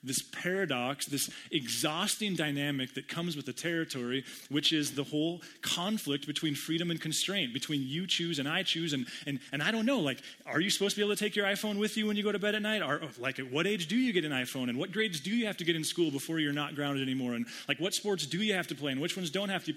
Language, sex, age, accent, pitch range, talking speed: English, male, 30-49, American, 130-180 Hz, 275 wpm